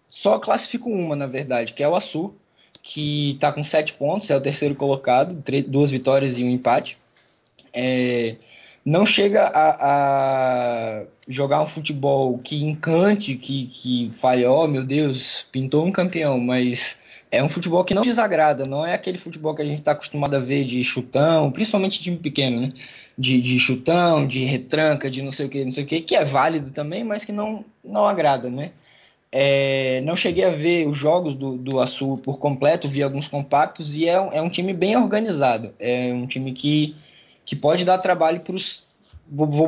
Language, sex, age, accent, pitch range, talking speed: Portuguese, male, 20-39, Brazilian, 130-165 Hz, 190 wpm